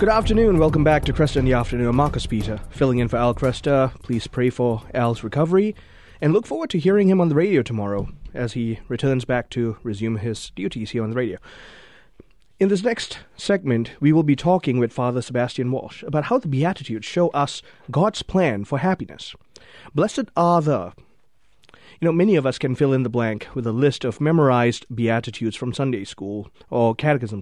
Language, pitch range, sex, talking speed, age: English, 120-170 Hz, male, 195 wpm, 30-49